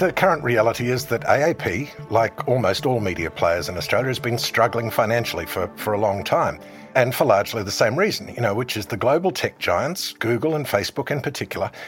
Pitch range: 105-130 Hz